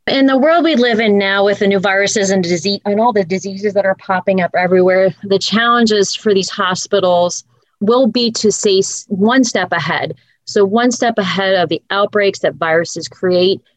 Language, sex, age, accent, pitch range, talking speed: English, female, 30-49, American, 175-210 Hz, 190 wpm